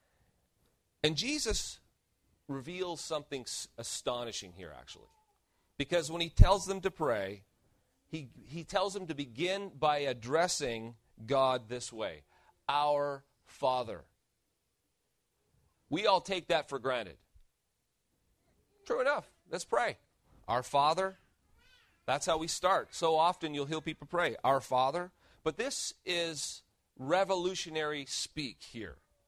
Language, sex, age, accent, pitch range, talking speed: English, male, 40-59, American, 135-190 Hz, 115 wpm